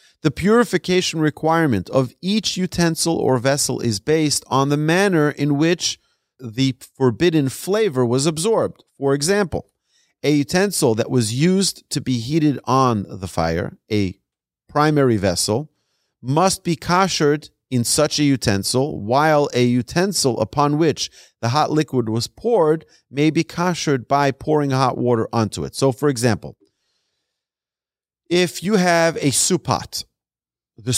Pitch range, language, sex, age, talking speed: 115-155 Hz, English, male, 40-59, 140 wpm